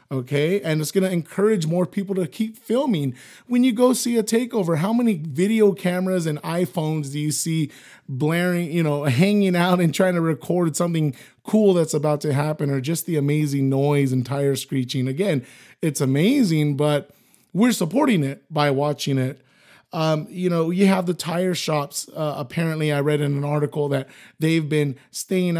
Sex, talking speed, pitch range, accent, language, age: male, 185 wpm, 145-195 Hz, American, English, 30-49